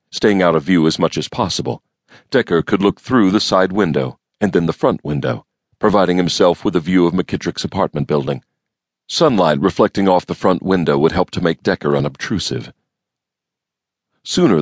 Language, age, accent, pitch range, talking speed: English, 40-59, American, 75-95 Hz, 170 wpm